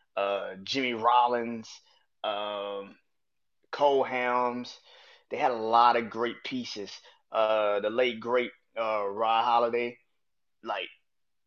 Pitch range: 110-135 Hz